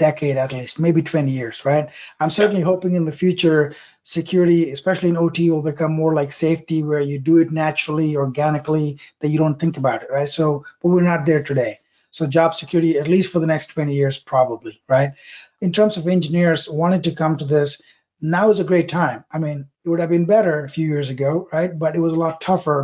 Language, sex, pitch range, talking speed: English, male, 150-170 Hz, 225 wpm